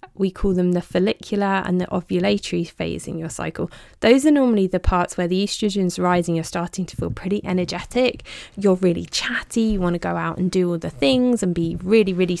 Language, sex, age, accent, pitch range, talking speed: English, female, 20-39, British, 175-215 Hz, 220 wpm